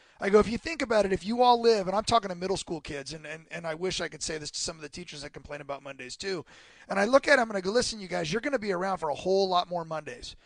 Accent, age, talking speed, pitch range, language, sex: American, 30-49, 340 wpm, 175-235 Hz, English, male